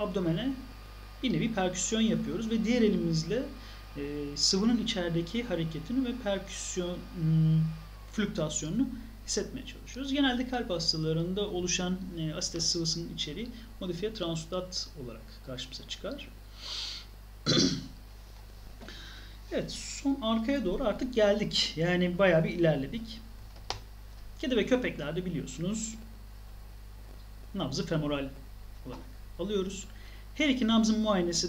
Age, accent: 40-59, native